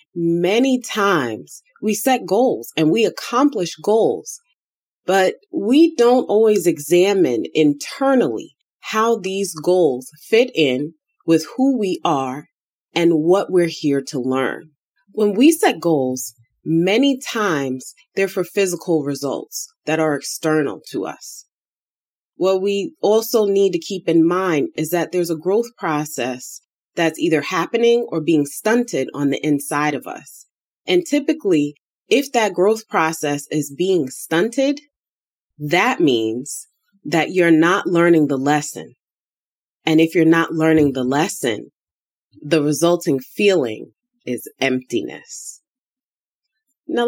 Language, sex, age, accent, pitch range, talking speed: English, female, 30-49, American, 150-240 Hz, 125 wpm